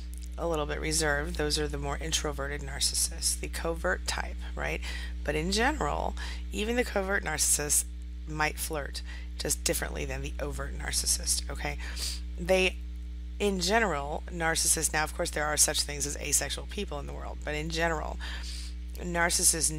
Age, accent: 30-49, American